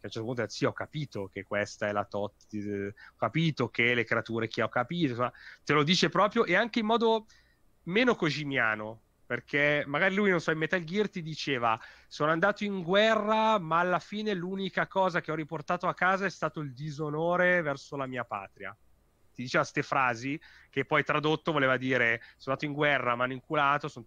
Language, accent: Italian, native